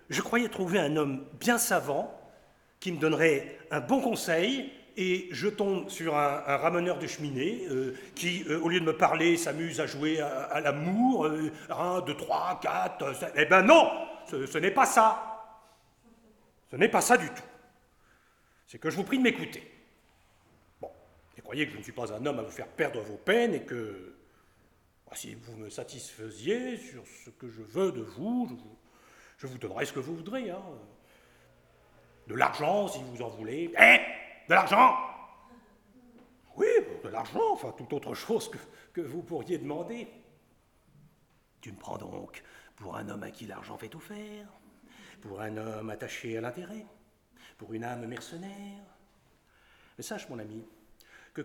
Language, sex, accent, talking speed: French, male, French, 175 wpm